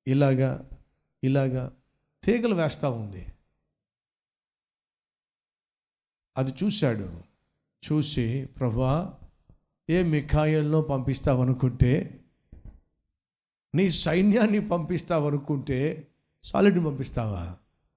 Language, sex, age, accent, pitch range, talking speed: Telugu, male, 60-79, native, 135-195 Hz, 55 wpm